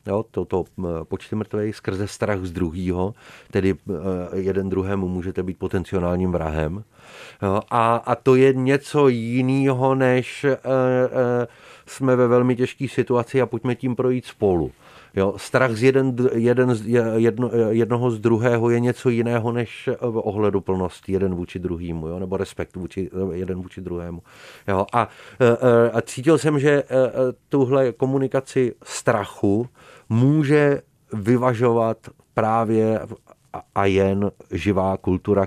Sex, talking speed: male, 130 wpm